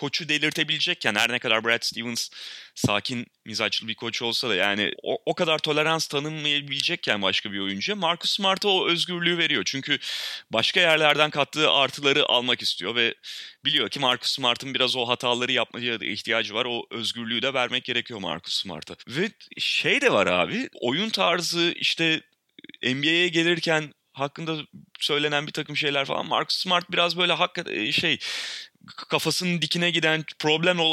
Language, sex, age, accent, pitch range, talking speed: Turkish, male, 30-49, native, 115-170 Hz, 155 wpm